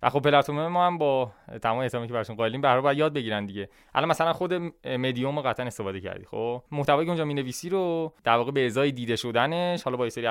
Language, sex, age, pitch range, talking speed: Persian, male, 20-39, 115-145 Hz, 215 wpm